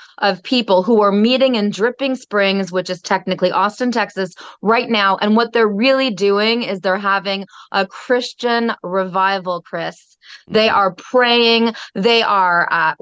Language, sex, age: English, female, 30-49